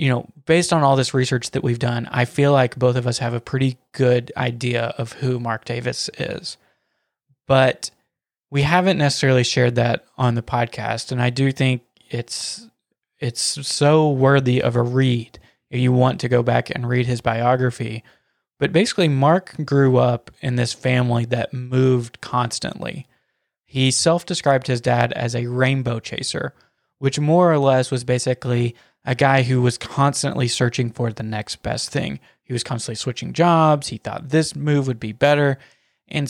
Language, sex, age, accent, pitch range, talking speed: English, male, 20-39, American, 120-140 Hz, 175 wpm